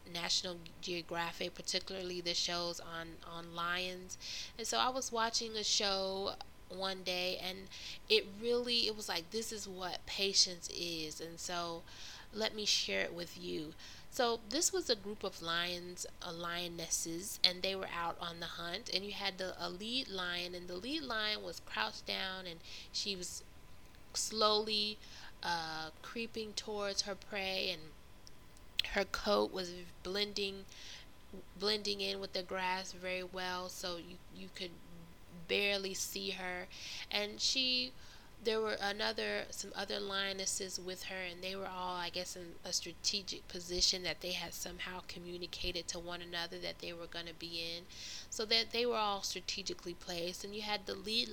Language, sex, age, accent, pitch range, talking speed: English, female, 20-39, American, 175-205 Hz, 165 wpm